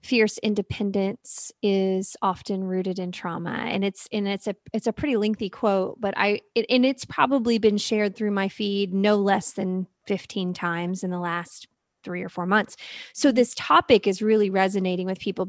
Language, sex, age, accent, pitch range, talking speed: English, female, 30-49, American, 200-270 Hz, 185 wpm